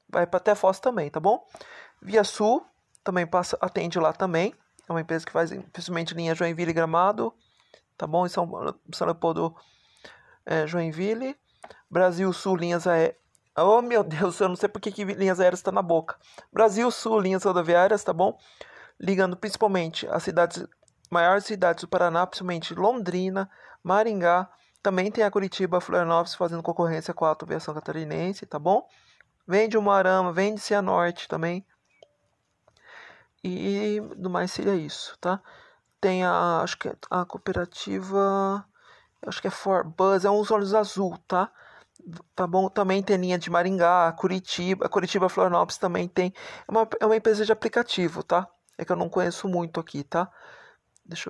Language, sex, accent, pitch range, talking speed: Portuguese, male, Brazilian, 175-205 Hz, 160 wpm